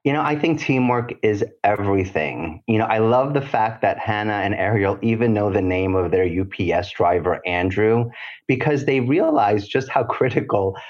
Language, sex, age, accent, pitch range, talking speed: English, male, 30-49, American, 95-125 Hz, 175 wpm